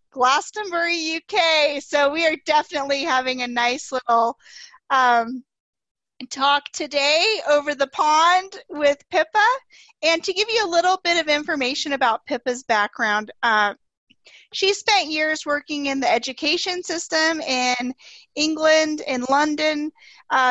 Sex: female